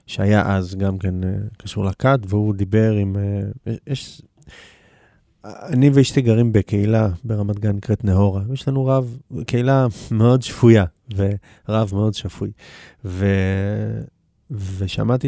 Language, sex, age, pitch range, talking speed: Hebrew, male, 30-49, 105-130 Hz, 115 wpm